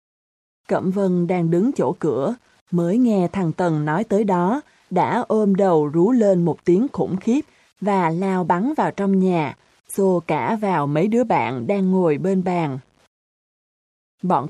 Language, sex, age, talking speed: Vietnamese, female, 20-39, 160 wpm